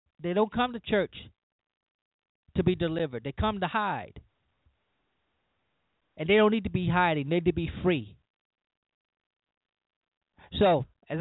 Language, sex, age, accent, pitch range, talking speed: English, male, 30-49, American, 145-175 Hz, 140 wpm